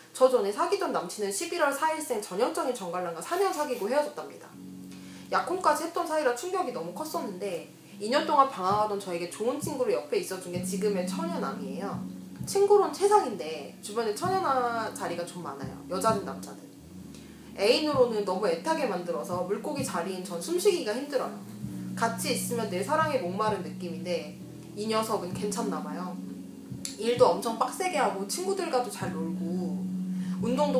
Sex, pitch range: female, 185-300 Hz